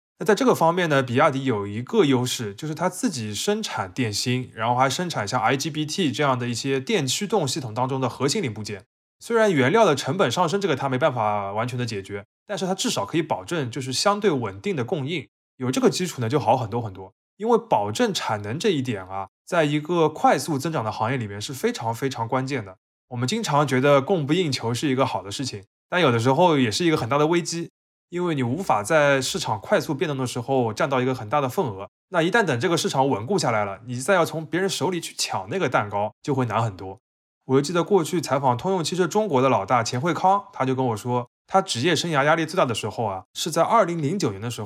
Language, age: Chinese, 20-39